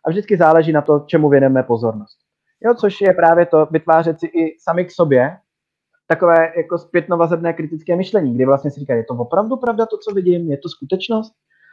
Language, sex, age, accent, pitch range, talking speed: Czech, male, 30-49, native, 140-175 Hz, 195 wpm